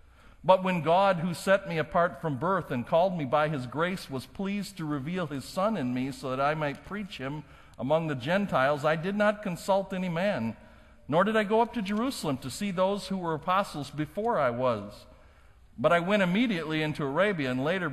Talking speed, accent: 210 wpm, American